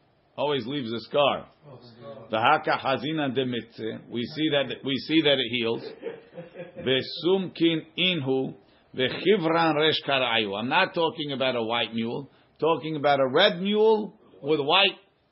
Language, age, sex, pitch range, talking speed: English, 50-69, male, 125-165 Hz, 145 wpm